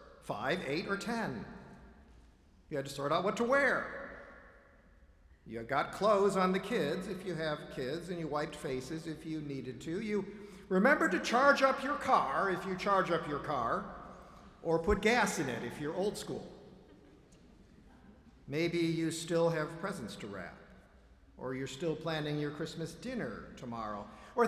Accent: American